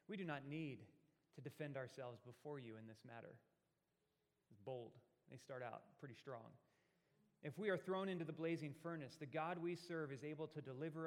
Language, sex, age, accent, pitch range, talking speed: English, male, 30-49, American, 135-165 Hz, 185 wpm